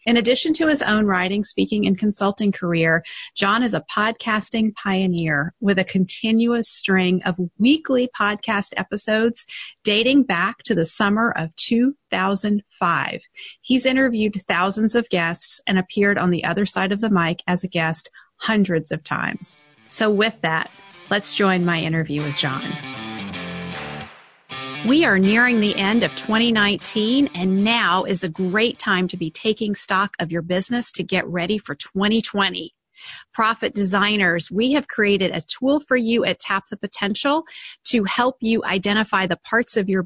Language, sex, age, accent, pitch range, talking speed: English, female, 40-59, American, 180-225 Hz, 155 wpm